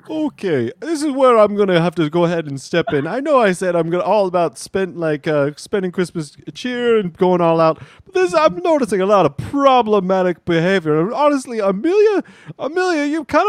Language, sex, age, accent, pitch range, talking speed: English, male, 30-49, American, 170-260 Hz, 200 wpm